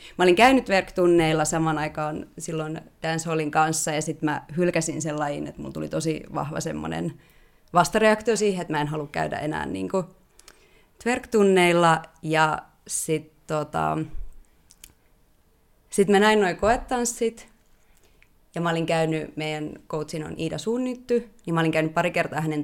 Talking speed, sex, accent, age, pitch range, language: 150 wpm, female, native, 30-49, 155-180 Hz, Finnish